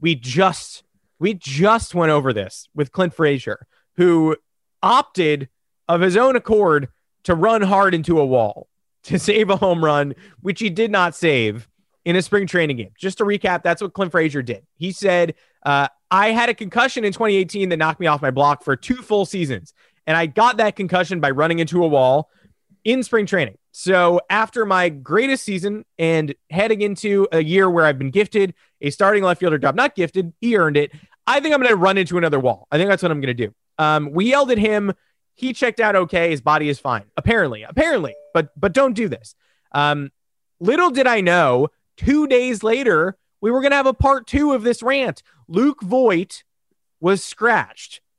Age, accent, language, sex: 30-49, American, English, male